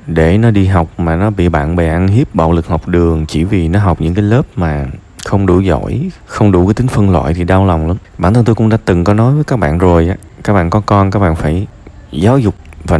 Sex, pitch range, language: male, 85-105 Hz, Vietnamese